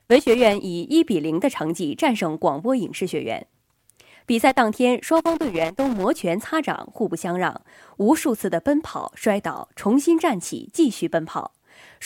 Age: 20-39